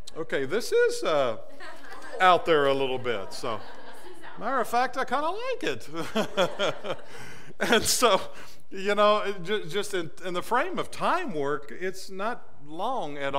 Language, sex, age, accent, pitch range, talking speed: English, male, 50-69, American, 140-230 Hz, 150 wpm